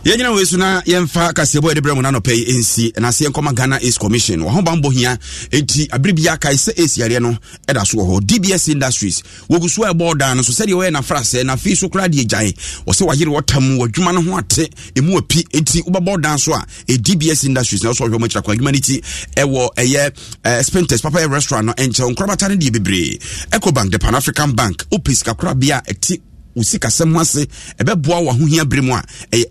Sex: male